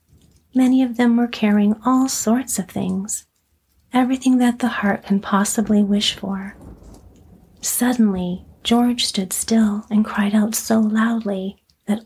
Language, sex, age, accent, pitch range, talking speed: English, female, 40-59, American, 200-230 Hz, 135 wpm